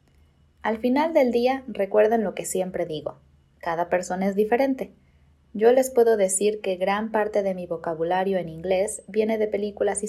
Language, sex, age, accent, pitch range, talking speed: Spanish, female, 20-39, Mexican, 180-230 Hz, 175 wpm